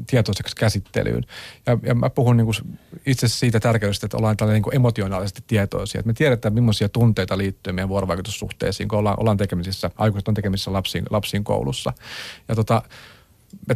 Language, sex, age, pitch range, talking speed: Finnish, male, 40-59, 105-120 Hz, 165 wpm